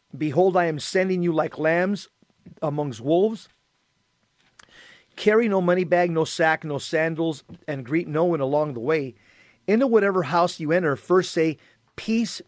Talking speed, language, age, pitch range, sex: 155 wpm, English, 40-59, 150-185 Hz, male